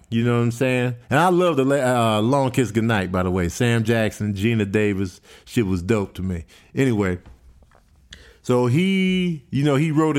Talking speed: 190 wpm